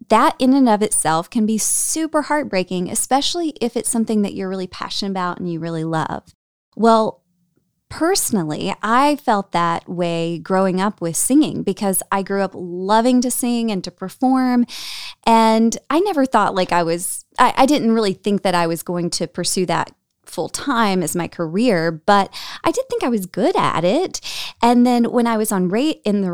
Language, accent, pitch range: English, American, 180-240 Hz